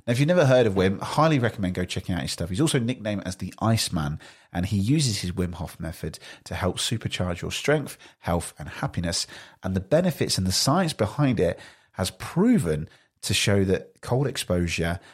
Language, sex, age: English, male, 30-49